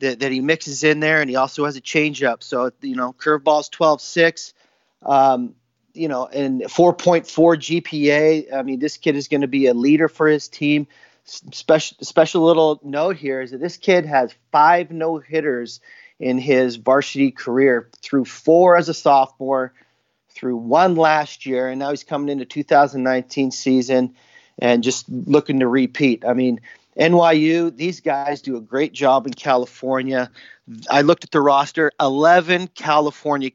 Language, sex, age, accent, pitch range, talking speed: English, male, 30-49, American, 130-160 Hz, 165 wpm